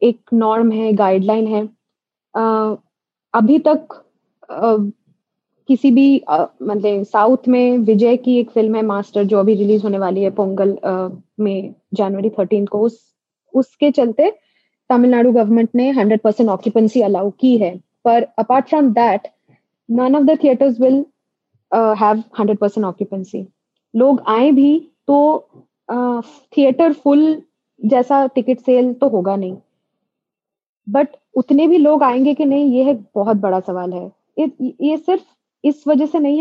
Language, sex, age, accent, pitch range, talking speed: Hindi, female, 20-39, native, 210-260 Hz, 135 wpm